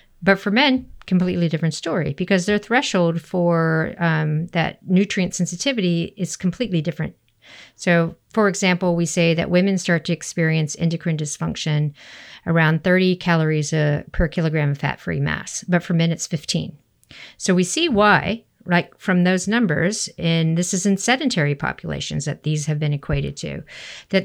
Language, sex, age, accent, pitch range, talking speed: English, female, 50-69, American, 160-195 Hz, 160 wpm